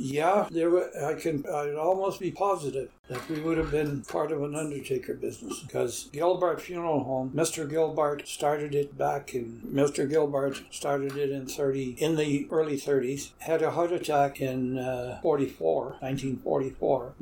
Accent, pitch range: American, 130-150 Hz